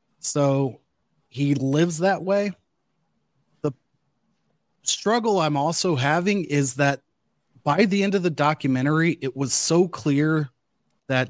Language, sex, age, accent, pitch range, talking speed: English, male, 30-49, American, 125-155 Hz, 120 wpm